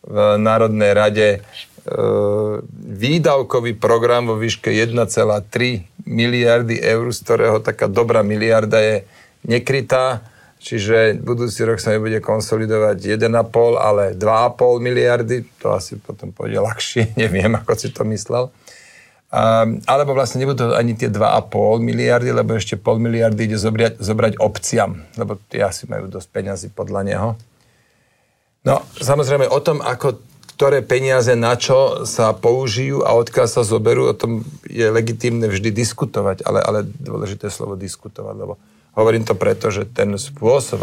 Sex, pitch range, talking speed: male, 105-120 Hz, 140 wpm